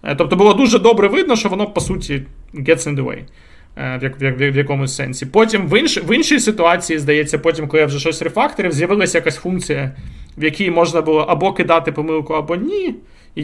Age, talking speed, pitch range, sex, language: 20-39, 190 wpm, 135-175 Hz, male, Ukrainian